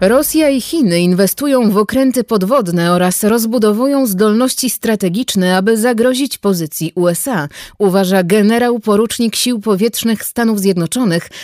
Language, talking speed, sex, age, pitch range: Polish, 110 wpm, female, 30-49, 185-245 Hz